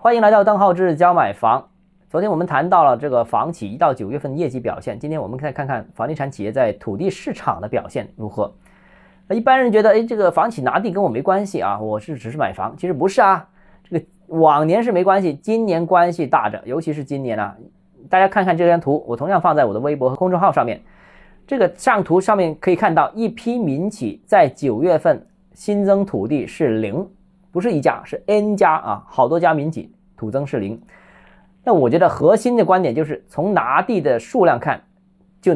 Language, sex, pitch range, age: Chinese, male, 145-195 Hz, 20-39